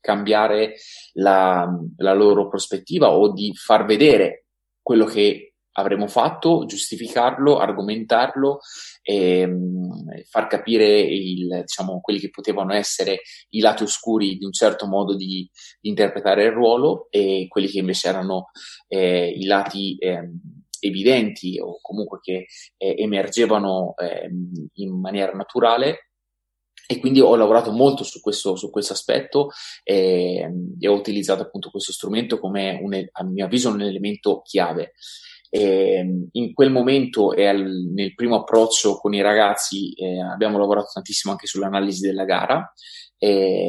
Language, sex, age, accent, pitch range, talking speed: Italian, male, 20-39, native, 95-110 Hz, 130 wpm